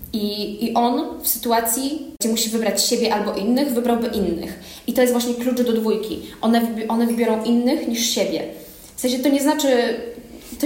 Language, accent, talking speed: Polish, native, 180 wpm